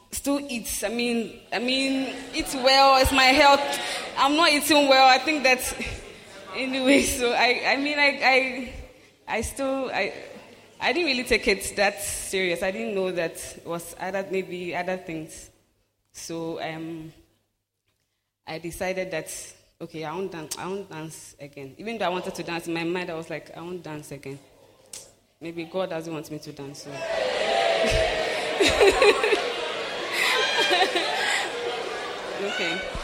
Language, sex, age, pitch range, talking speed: English, female, 20-39, 160-235 Hz, 150 wpm